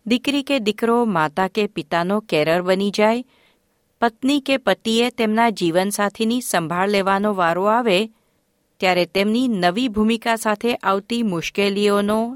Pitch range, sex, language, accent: 175-235 Hz, female, Gujarati, native